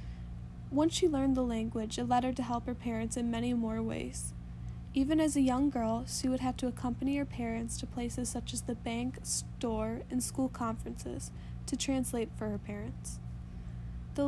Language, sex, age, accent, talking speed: English, female, 10-29, American, 185 wpm